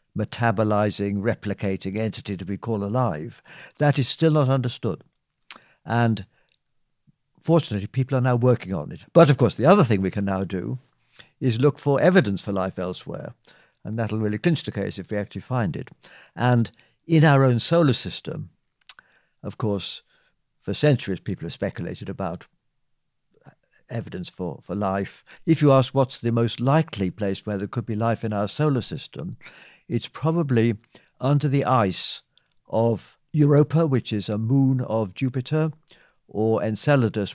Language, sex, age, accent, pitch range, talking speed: English, male, 60-79, British, 105-135 Hz, 155 wpm